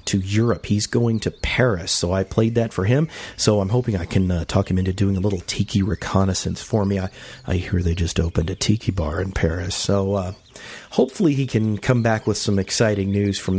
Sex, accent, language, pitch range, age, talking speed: male, American, English, 100-125 Hz, 40-59, 225 wpm